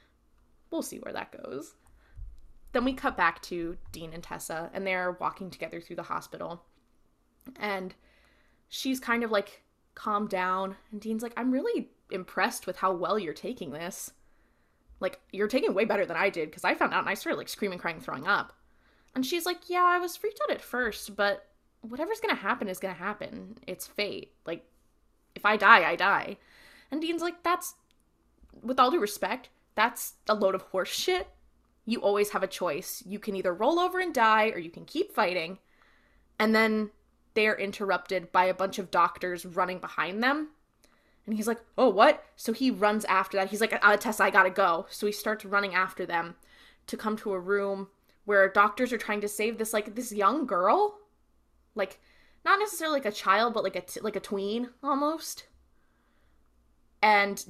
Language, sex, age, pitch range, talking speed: English, female, 20-39, 190-245 Hz, 190 wpm